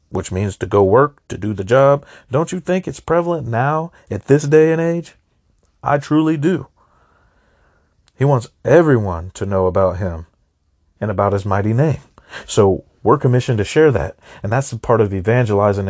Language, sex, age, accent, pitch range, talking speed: English, male, 40-59, American, 100-135 Hz, 175 wpm